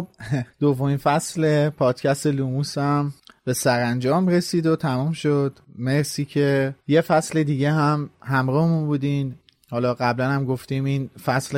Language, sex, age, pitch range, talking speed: Persian, male, 30-49, 130-150 Hz, 130 wpm